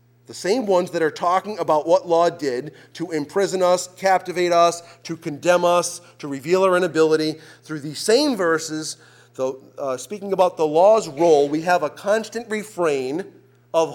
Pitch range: 165-230 Hz